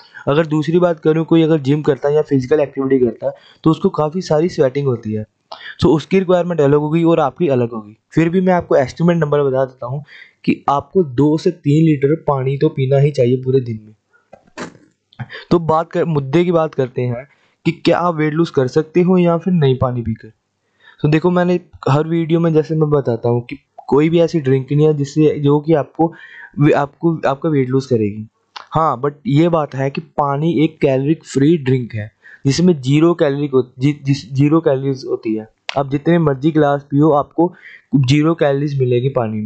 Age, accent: 20-39, native